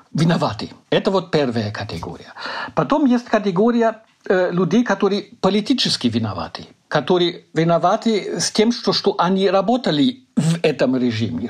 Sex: male